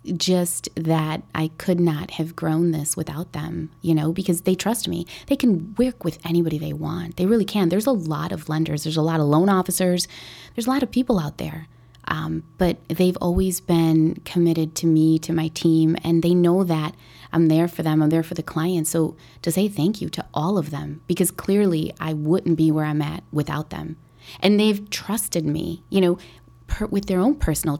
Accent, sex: American, female